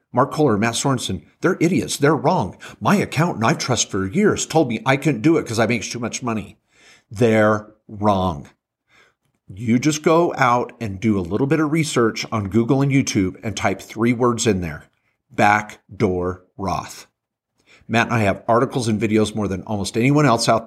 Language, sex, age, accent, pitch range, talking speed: English, male, 50-69, American, 105-135 Hz, 185 wpm